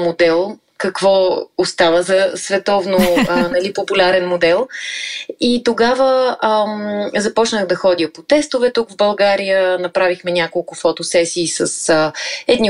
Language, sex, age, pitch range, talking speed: Bulgarian, female, 20-39, 175-215 Hz, 125 wpm